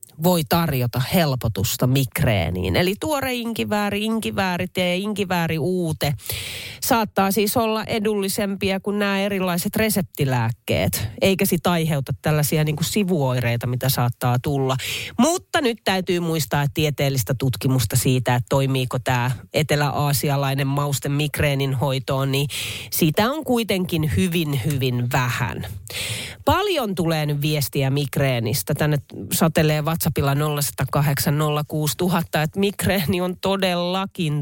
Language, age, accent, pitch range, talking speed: Finnish, 30-49, native, 130-195 Hz, 110 wpm